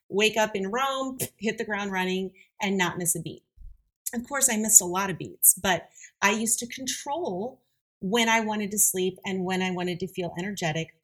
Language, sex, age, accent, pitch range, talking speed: English, female, 30-49, American, 165-215 Hz, 205 wpm